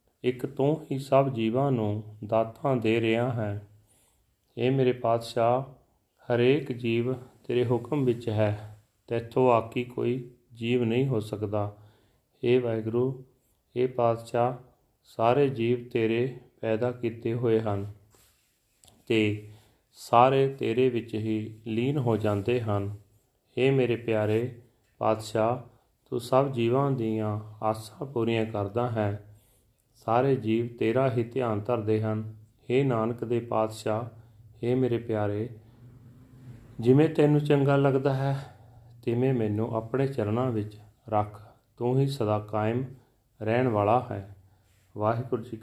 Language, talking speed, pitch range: Punjabi, 120 wpm, 110-125 Hz